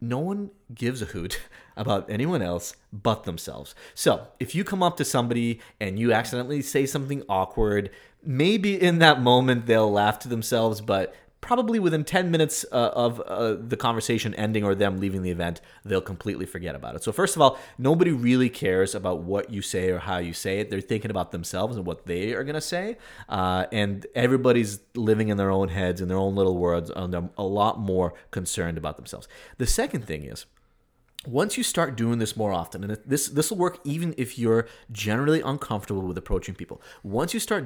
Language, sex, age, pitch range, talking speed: English, male, 30-49, 100-140 Hz, 200 wpm